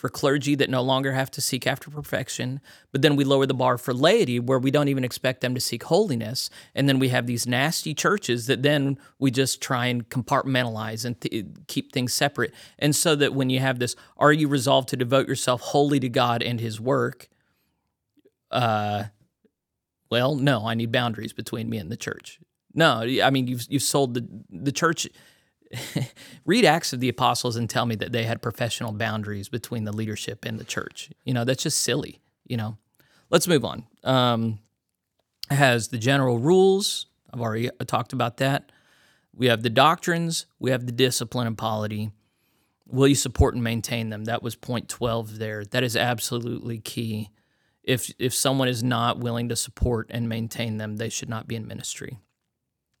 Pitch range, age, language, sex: 115-135 Hz, 30-49, English, male